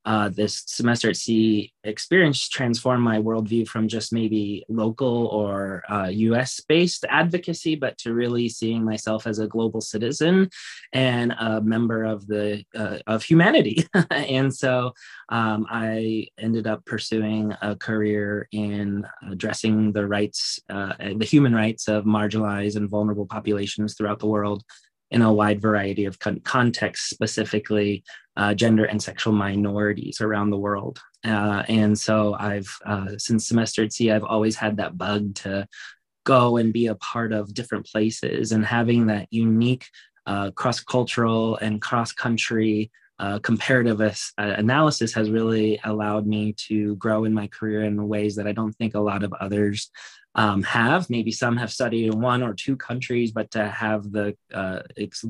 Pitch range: 105-115 Hz